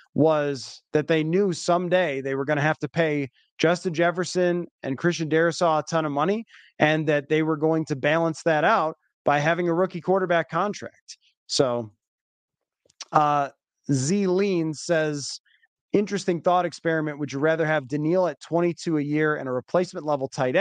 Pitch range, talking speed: 145-180 Hz, 170 wpm